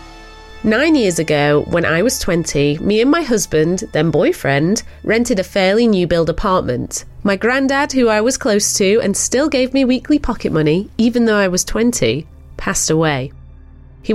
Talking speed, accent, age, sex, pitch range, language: 170 wpm, British, 30-49, female, 155-220 Hz, English